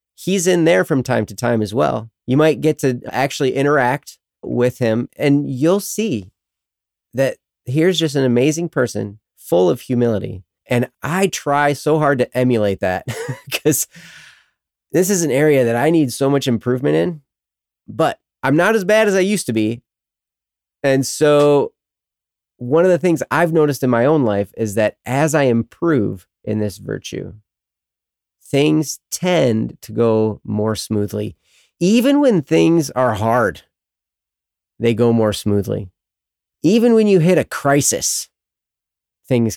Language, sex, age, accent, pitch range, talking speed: English, male, 30-49, American, 110-155 Hz, 155 wpm